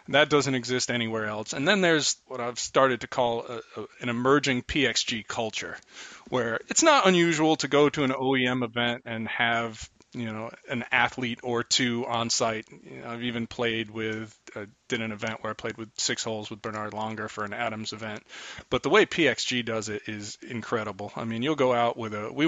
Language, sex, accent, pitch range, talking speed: English, male, American, 110-125 Hz, 210 wpm